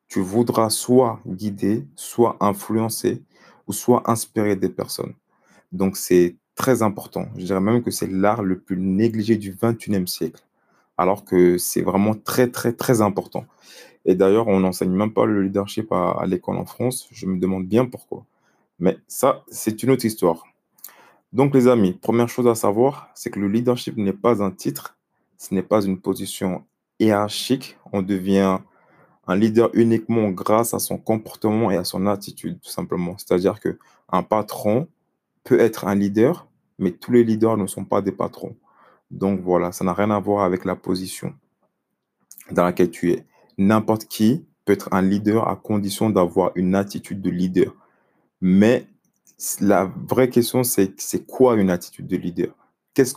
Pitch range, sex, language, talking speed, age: 95-115 Hz, male, French, 170 wpm, 20-39